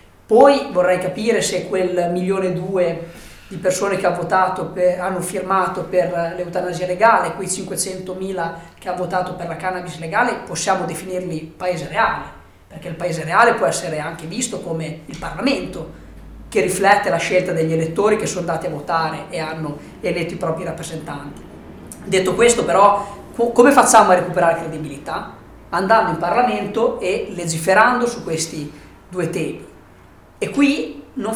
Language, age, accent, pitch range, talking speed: Italian, 20-39, native, 165-195 Hz, 155 wpm